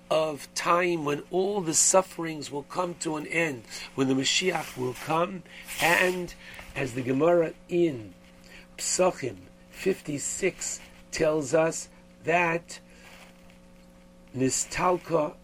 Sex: male